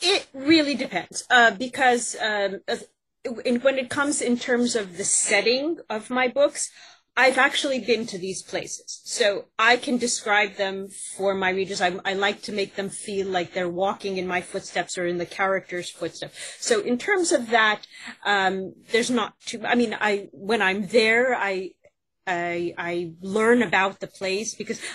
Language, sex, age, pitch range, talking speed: English, female, 30-49, 195-245 Hz, 175 wpm